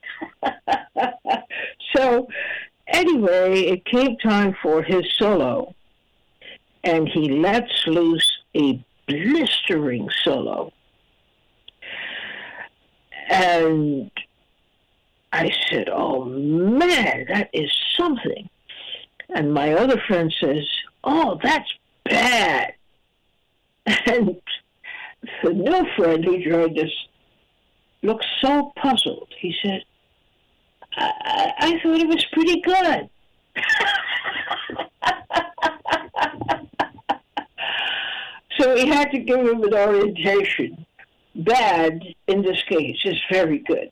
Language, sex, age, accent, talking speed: English, female, 60-79, American, 90 wpm